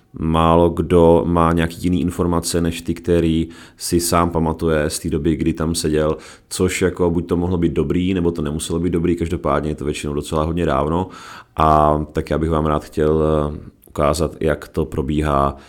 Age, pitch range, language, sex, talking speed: 30-49, 75-85 Hz, Czech, male, 185 wpm